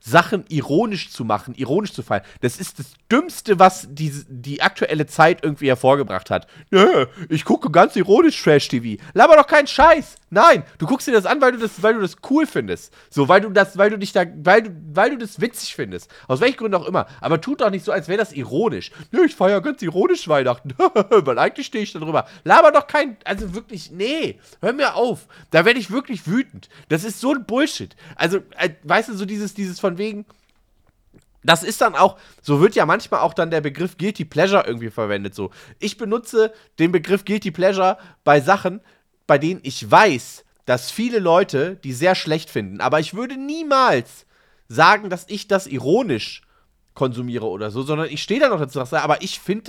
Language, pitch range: German, 150-220 Hz